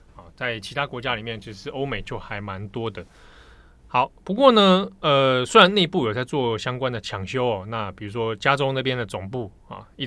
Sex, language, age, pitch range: male, Chinese, 20-39, 100-135 Hz